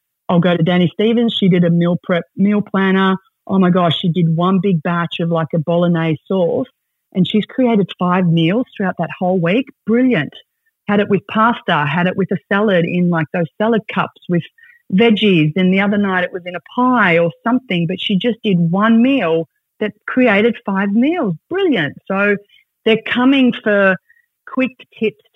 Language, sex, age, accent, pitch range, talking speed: English, female, 30-49, Australian, 165-210 Hz, 185 wpm